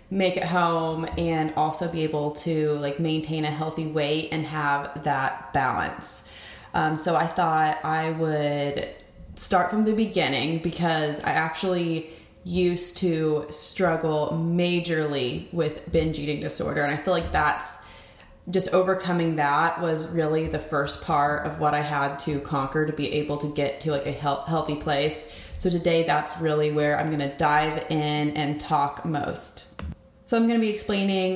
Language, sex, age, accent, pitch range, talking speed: English, female, 20-39, American, 155-190 Hz, 165 wpm